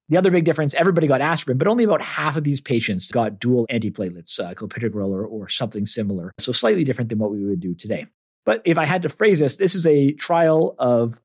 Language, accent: English, American